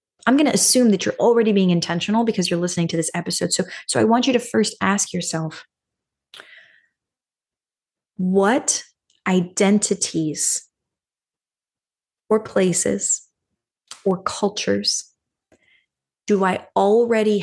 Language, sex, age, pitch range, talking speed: English, female, 20-39, 170-205 Hz, 115 wpm